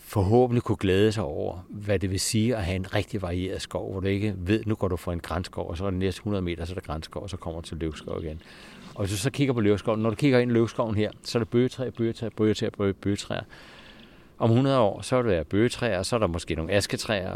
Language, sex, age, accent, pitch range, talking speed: Danish, male, 60-79, native, 95-115 Hz, 265 wpm